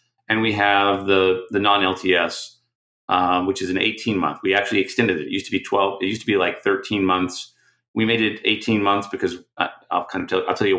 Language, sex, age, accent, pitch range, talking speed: English, male, 30-49, American, 90-115 Hz, 240 wpm